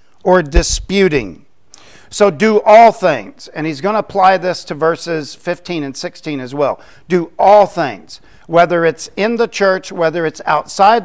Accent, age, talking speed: American, 50-69, 165 wpm